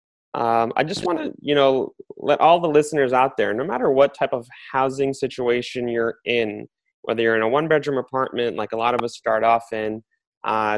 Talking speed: 205 wpm